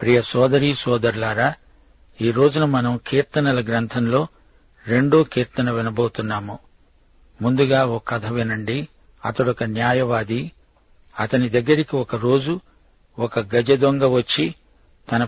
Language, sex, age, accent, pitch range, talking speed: Telugu, male, 50-69, native, 115-135 Hz, 100 wpm